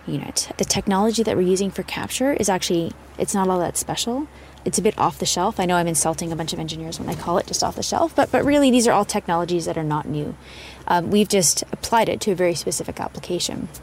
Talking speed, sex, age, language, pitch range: 250 wpm, female, 20-39, English, 165-200 Hz